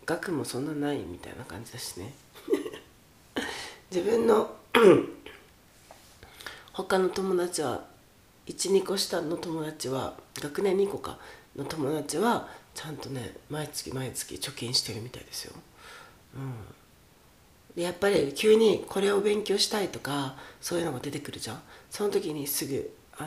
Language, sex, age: Japanese, female, 40-59